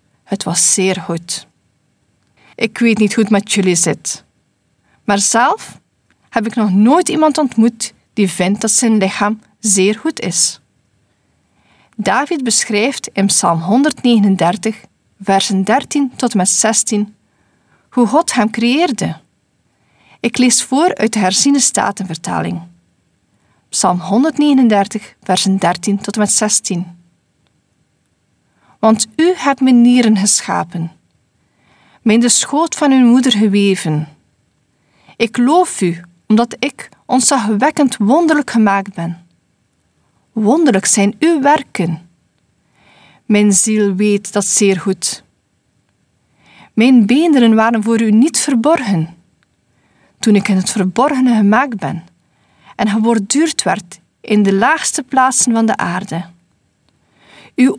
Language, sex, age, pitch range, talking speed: Dutch, female, 40-59, 185-245 Hz, 120 wpm